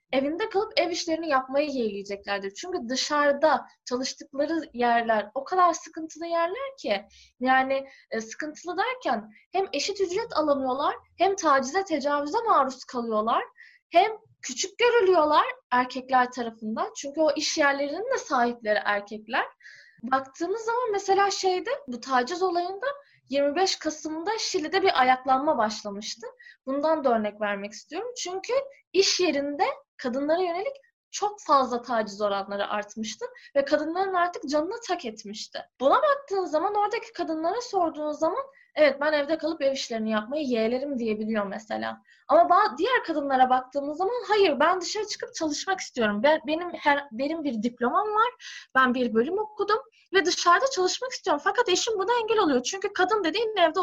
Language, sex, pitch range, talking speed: Turkish, female, 255-385 Hz, 140 wpm